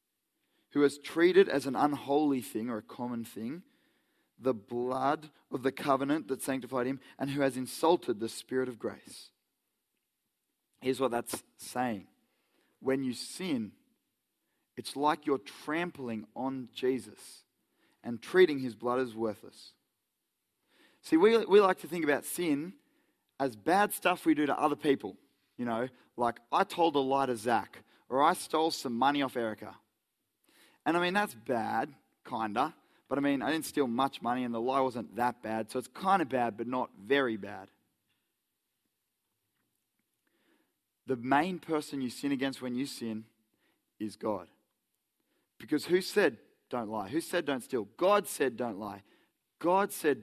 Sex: male